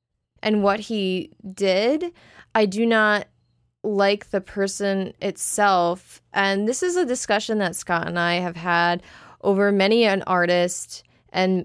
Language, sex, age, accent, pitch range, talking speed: English, female, 20-39, American, 185-215 Hz, 140 wpm